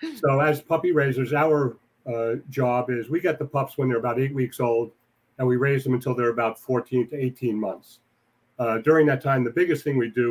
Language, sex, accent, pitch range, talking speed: English, male, American, 115-140 Hz, 220 wpm